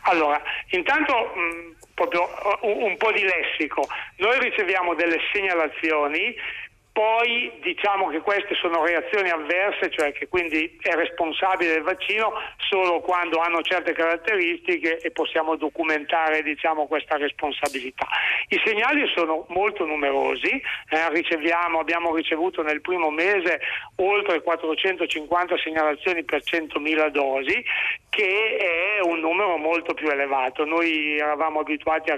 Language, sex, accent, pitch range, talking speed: Italian, male, native, 155-190 Hz, 120 wpm